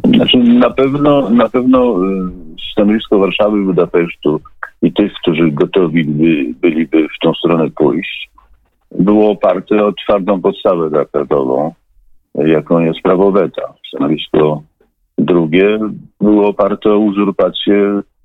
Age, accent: 50-69, native